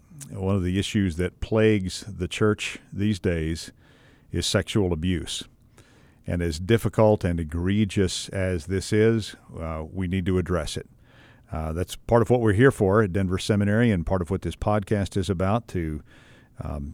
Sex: male